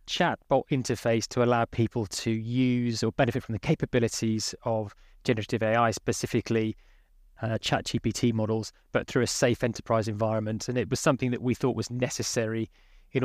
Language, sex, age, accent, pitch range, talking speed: English, male, 20-39, British, 110-125 Hz, 165 wpm